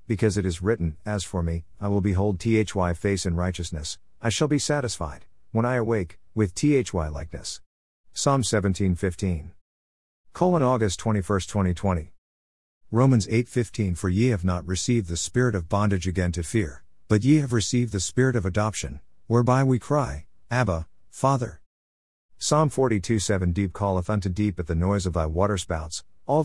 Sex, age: male, 50-69